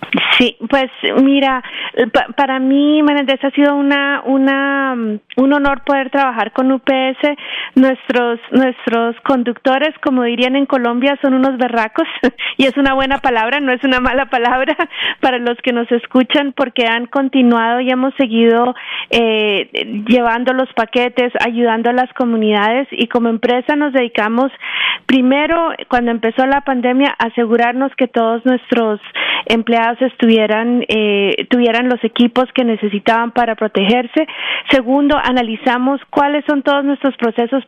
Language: Spanish